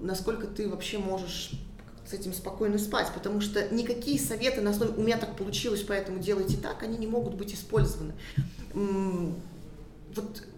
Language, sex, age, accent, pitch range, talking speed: Russian, female, 20-39, native, 195-225 Hz, 155 wpm